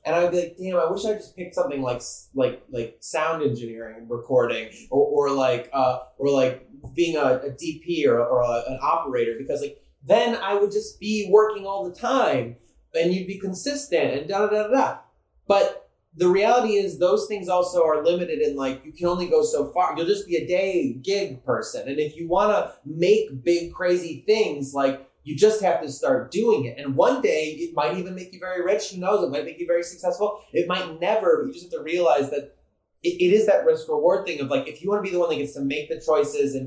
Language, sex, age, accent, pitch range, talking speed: English, male, 30-49, American, 140-205 Hz, 235 wpm